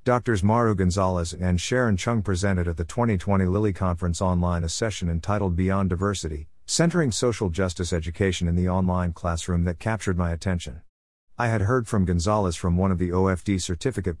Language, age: English, 50-69